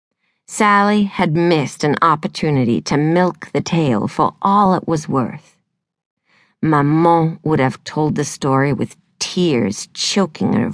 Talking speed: 135 wpm